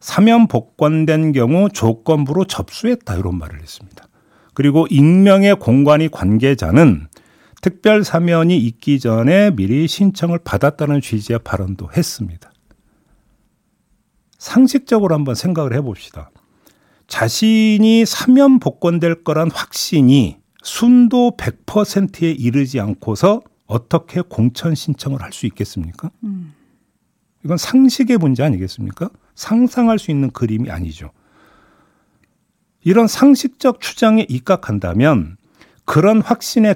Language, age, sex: Korean, 50-69, male